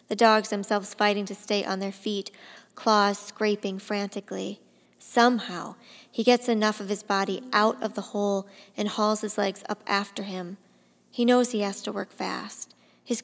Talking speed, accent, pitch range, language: 170 wpm, American, 195-225 Hz, English